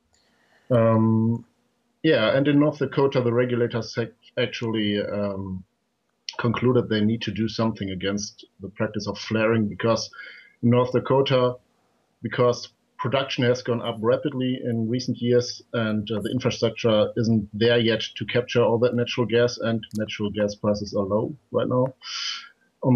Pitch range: 110-125 Hz